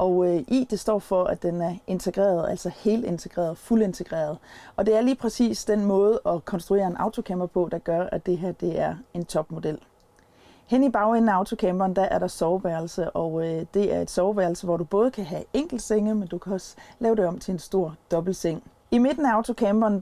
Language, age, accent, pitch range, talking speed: Danish, 30-49, native, 180-220 Hz, 215 wpm